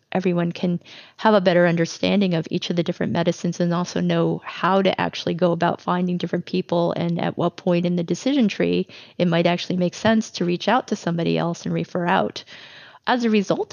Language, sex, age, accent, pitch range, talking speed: English, female, 30-49, American, 175-195 Hz, 210 wpm